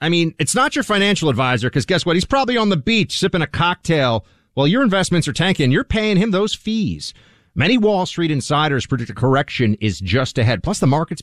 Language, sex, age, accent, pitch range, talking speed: English, male, 40-59, American, 125-170 Hz, 225 wpm